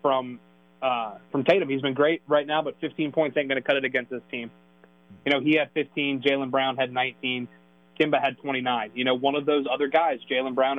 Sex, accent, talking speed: male, American, 230 wpm